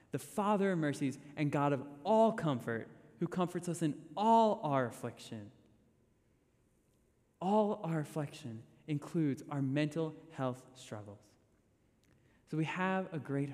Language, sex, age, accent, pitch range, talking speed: English, male, 20-39, American, 115-150 Hz, 130 wpm